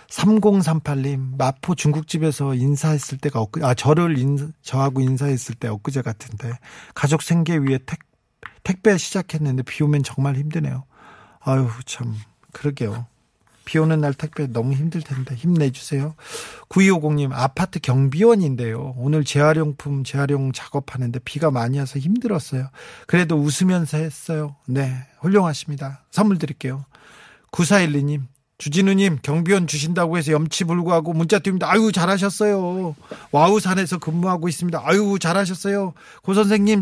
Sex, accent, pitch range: male, native, 140-195 Hz